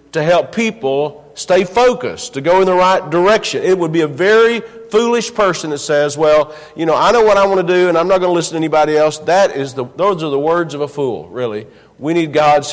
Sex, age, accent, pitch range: male, 50-69, American, 140-190 Hz